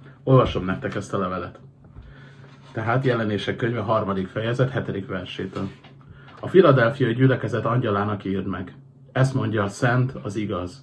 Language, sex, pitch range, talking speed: Hungarian, male, 105-135 Hz, 135 wpm